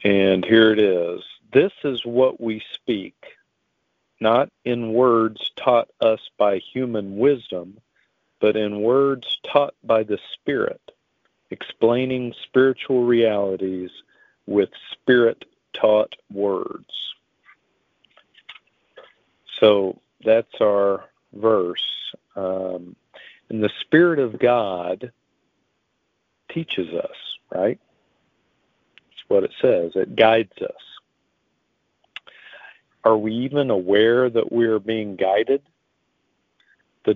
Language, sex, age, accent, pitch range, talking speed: English, male, 50-69, American, 100-125 Hz, 95 wpm